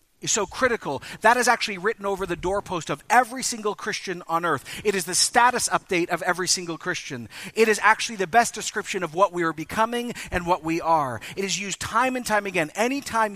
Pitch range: 160-205 Hz